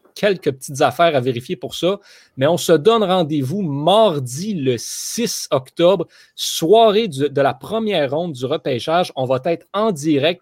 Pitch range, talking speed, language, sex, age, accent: 135-175 Hz, 160 wpm, French, male, 30-49, Canadian